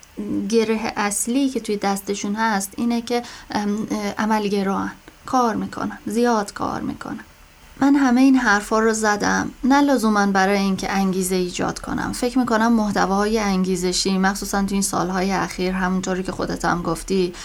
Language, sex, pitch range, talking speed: Persian, female, 190-230 Hz, 145 wpm